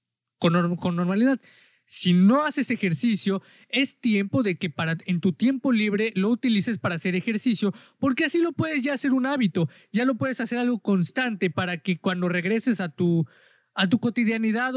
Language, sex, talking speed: Spanish, male, 175 wpm